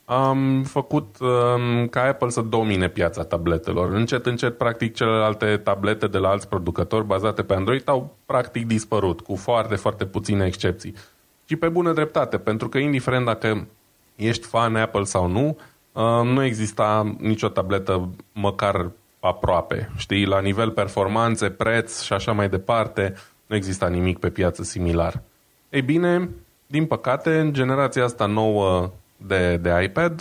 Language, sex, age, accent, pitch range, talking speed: Romanian, male, 20-39, native, 95-125 Hz, 150 wpm